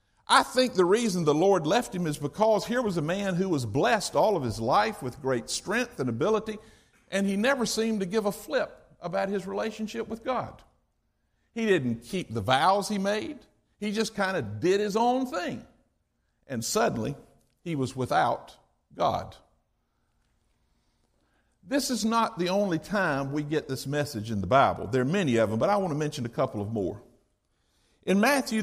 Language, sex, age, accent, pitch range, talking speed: English, male, 60-79, American, 145-220 Hz, 185 wpm